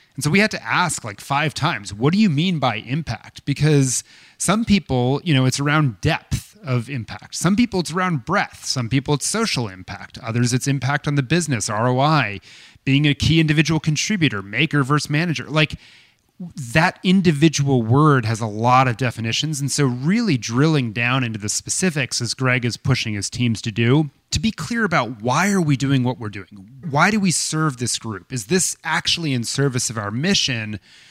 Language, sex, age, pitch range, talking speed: English, male, 30-49, 120-155 Hz, 195 wpm